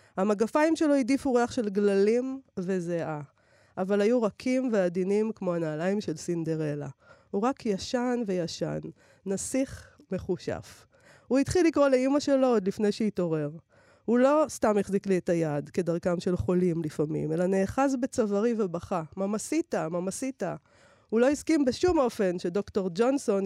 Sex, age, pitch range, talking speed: female, 40-59, 170-230 Hz, 135 wpm